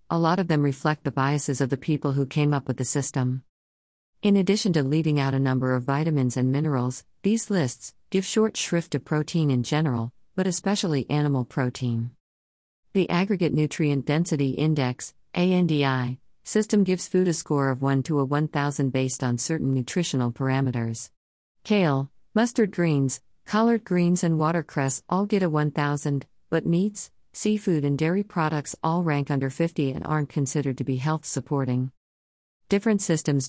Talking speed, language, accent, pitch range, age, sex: 160 wpm, English, American, 130-165 Hz, 50-69, female